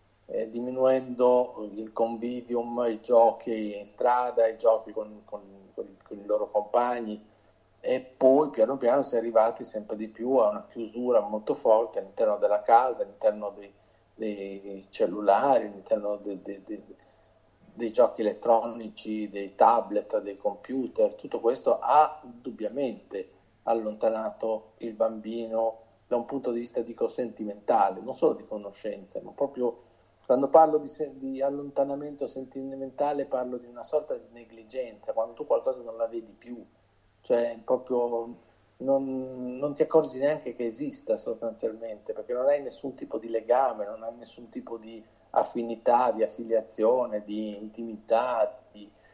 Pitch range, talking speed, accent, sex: 110-135 Hz, 145 wpm, native, male